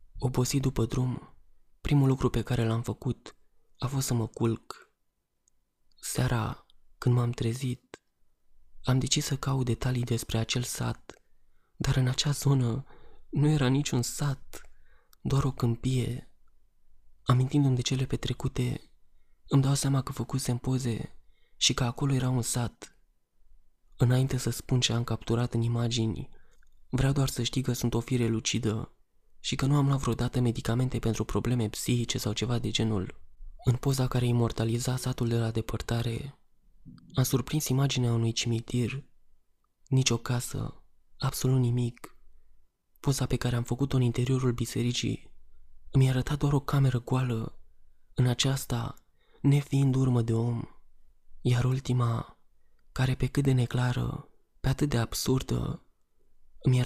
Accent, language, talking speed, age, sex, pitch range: native, Romanian, 140 wpm, 20-39, male, 115-130 Hz